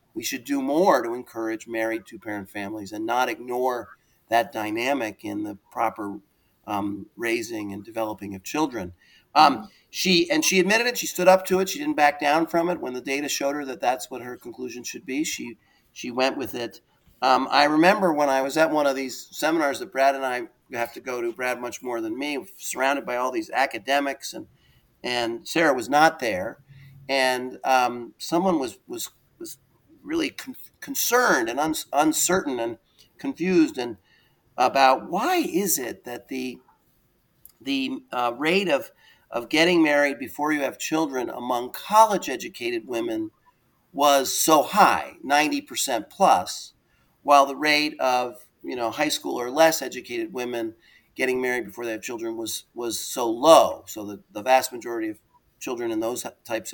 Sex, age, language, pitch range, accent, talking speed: male, 40-59, English, 125-190 Hz, American, 170 wpm